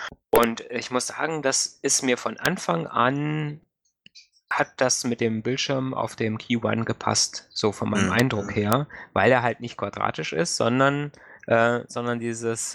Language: German